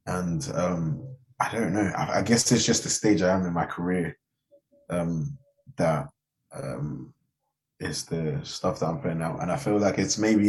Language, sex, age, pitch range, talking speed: English, male, 20-39, 80-120 Hz, 190 wpm